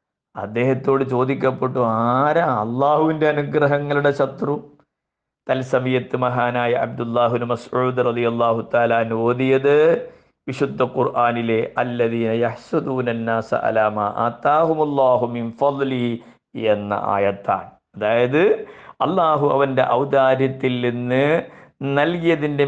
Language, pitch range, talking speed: Malayalam, 115-145 Hz, 50 wpm